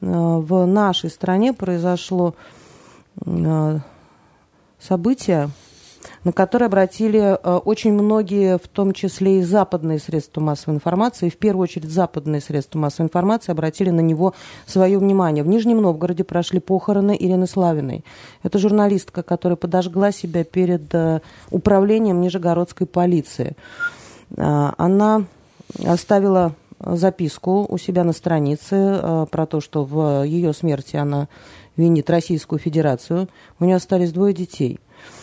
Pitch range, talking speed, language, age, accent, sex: 160-195 Hz, 120 wpm, Russian, 30-49, native, female